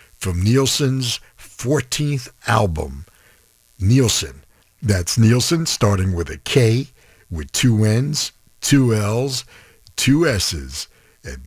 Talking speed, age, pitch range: 100 wpm, 60-79, 85-120 Hz